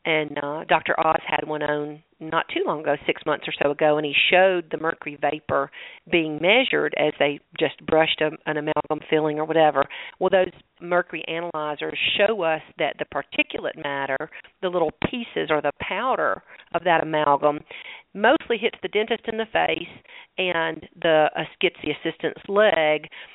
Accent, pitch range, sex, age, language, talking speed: American, 155-180 Hz, female, 40-59, English, 165 wpm